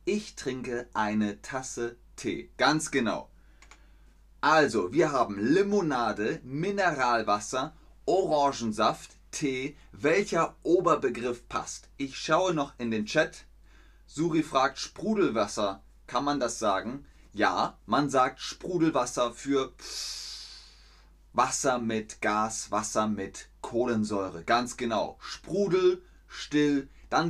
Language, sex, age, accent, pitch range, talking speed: German, male, 30-49, German, 105-145 Hz, 100 wpm